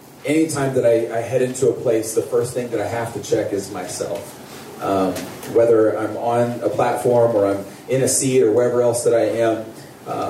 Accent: American